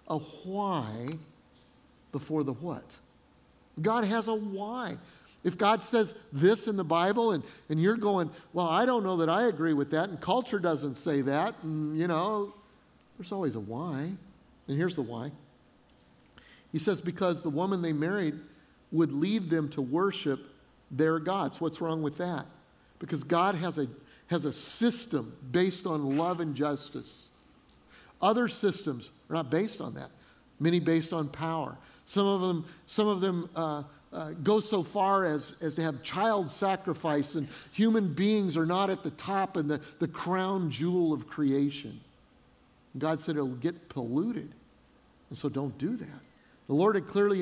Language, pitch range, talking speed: English, 150-195 Hz, 170 wpm